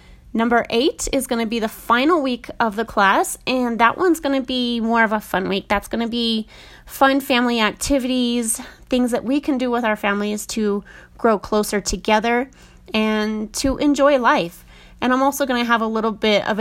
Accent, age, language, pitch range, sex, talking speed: American, 30-49, English, 205-250 Hz, female, 200 wpm